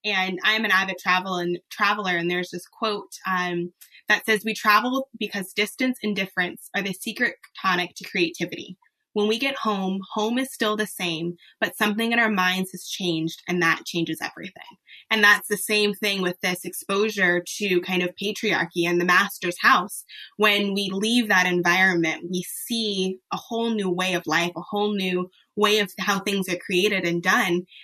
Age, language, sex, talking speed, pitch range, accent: 20-39, English, female, 185 wpm, 180-220 Hz, American